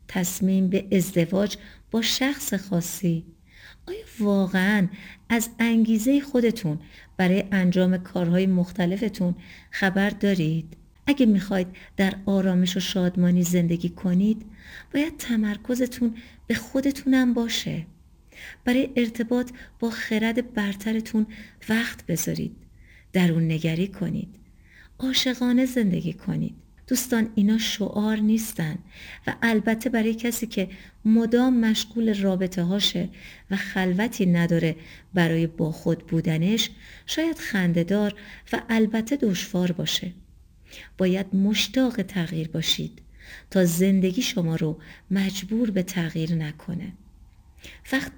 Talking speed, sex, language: 105 wpm, female, Persian